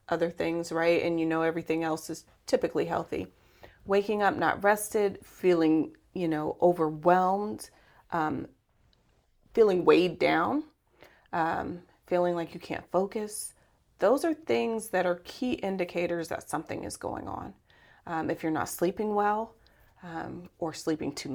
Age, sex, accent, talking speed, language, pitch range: 30-49, female, American, 145 wpm, English, 170-225 Hz